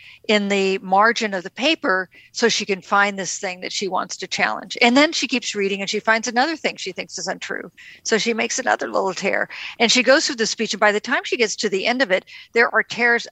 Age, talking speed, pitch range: 50-69, 255 wpm, 190-235 Hz